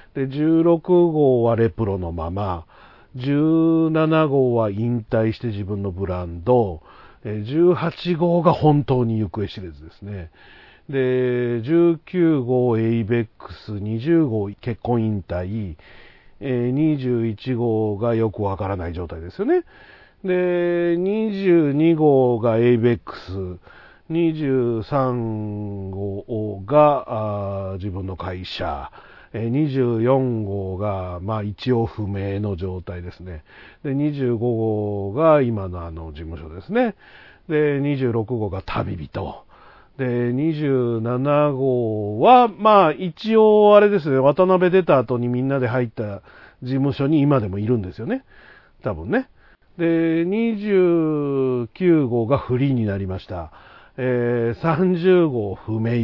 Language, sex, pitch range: Japanese, male, 105-150 Hz